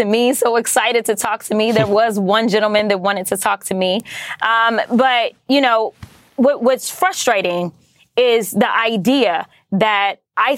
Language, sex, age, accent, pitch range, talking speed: English, female, 20-39, American, 205-255 Hz, 155 wpm